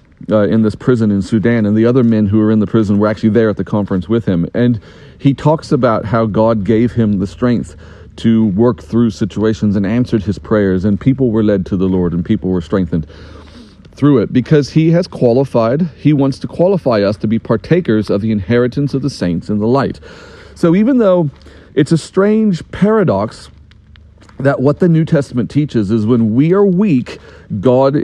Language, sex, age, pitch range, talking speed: English, male, 40-59, 110-150 Hz, 200 wpm